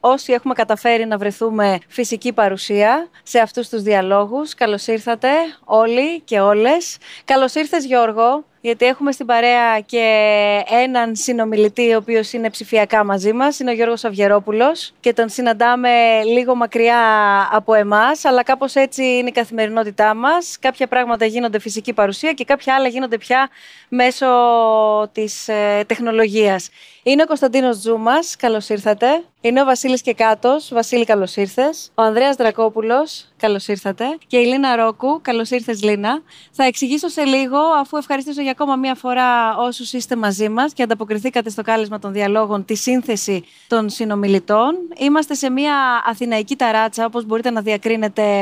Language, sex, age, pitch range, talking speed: Greek, female, 30-49, 215-260 Hz, 145 wpm